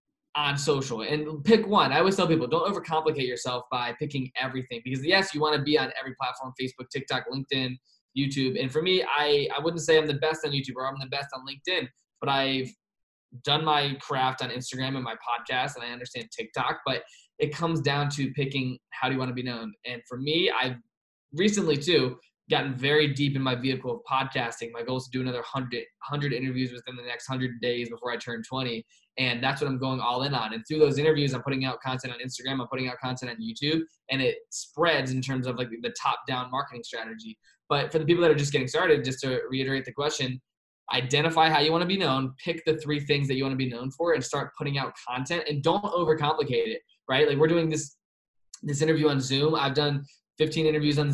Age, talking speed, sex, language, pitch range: 20-39, 230 wpm, male, English, 130-155 Hz